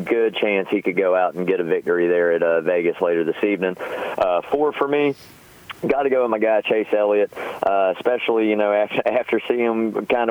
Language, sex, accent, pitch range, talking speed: English, male, American, 90-110 Hz, 215 wpm